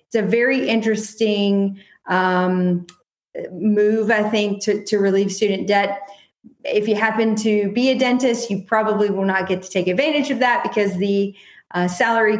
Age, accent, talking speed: 30-49, American, 165 wpm